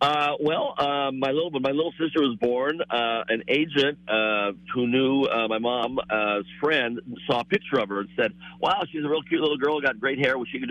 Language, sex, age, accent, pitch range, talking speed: English, male, 50-69, American, 110-140 Hz, 230 wpm